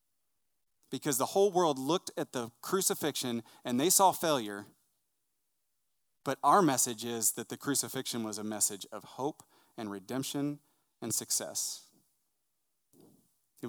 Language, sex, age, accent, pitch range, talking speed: English, male, 30-49, American, 115-160 Hz, 125 wpm